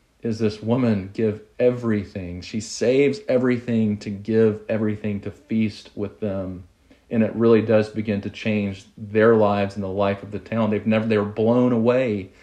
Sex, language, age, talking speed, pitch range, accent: male, English, 40-59, 165 wpm, 100-115 Hz, American